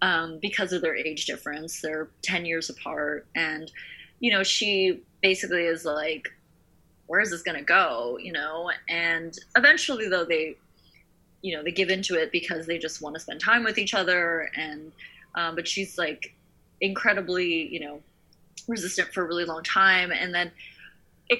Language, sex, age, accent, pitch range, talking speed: English, female, 20-39, American, 165-200 Hz, 175 wpm